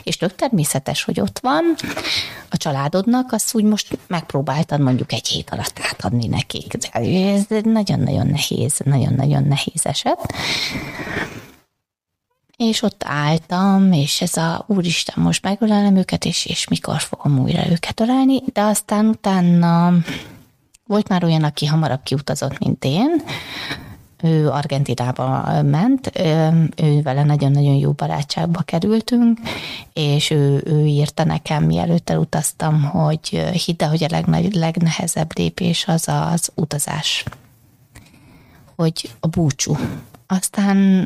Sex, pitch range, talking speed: female, 140-185 Hz, 120 wpm